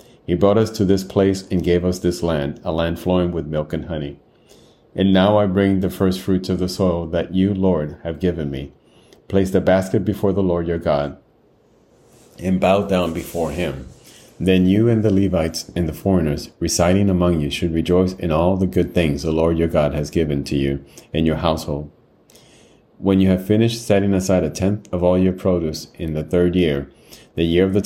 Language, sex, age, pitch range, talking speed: English, male, 40-59, 80-95 Hz, 205 wpm